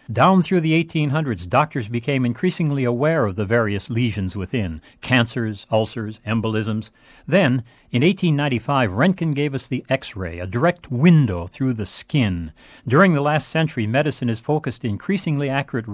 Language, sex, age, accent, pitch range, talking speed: English, male, 60-79, American, 105-140 Hz, 145 wpm